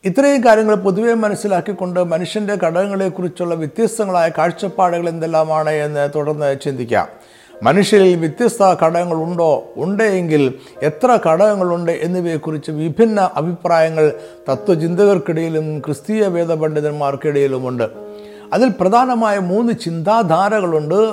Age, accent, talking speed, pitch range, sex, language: 50-69, native, 80 wpm, 160-210 Hz, male, Malayalam